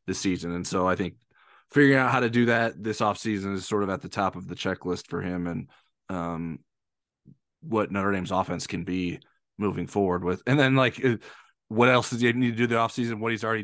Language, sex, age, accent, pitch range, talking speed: English, male, 20-39, American, 95-115 Hz, 225 wpm